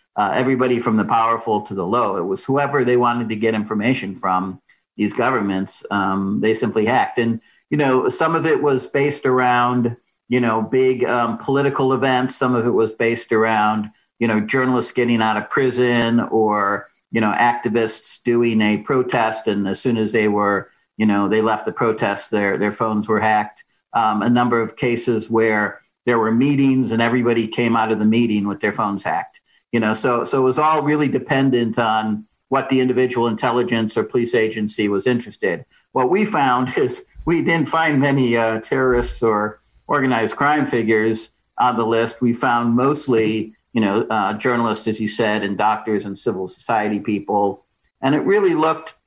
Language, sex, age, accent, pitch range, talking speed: English, male, 50-69, American, 110-130 Hz, 185 wpm